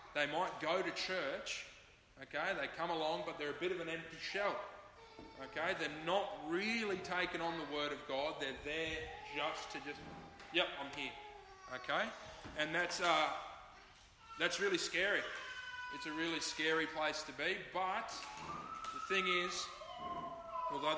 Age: 20-39